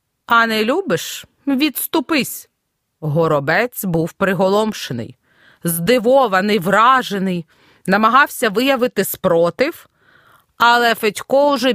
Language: Ukrainian